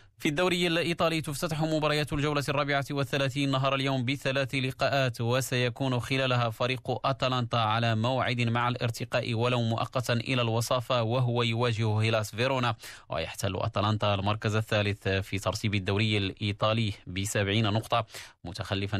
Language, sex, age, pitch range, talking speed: Arabic, male, 30-49, 105-130 Hz, 125 wpm